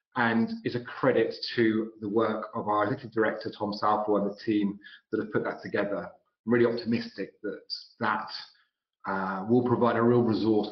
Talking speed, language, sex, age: 180 wpm, English, male, 40-59